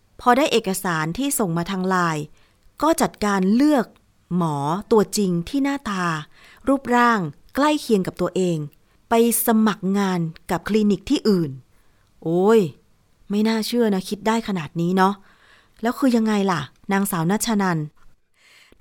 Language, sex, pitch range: Thai, female, 185-235 Hz